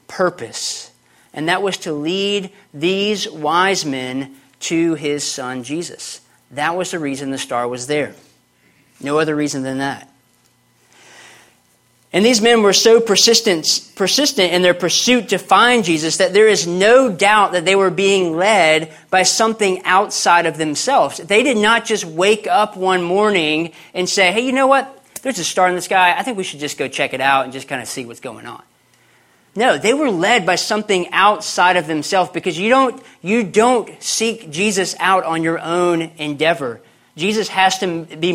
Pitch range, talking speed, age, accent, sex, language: 150-200 Hz, 180 wpm, 40-59, American, male, English